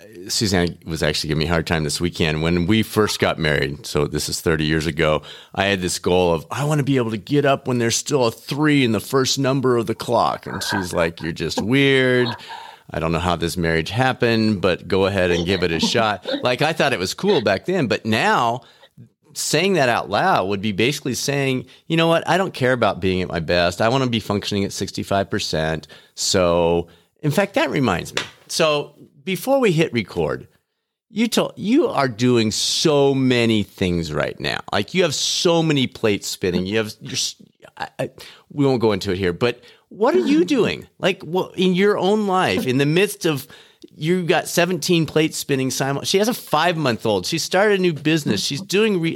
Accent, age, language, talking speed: American, 40-59, English, 215 wpm